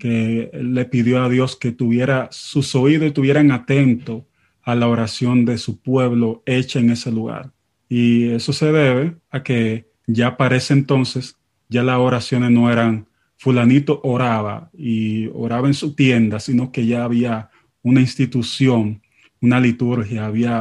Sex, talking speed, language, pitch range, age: male, 150 wpm, Spanish, 115-130 Hz, 30-49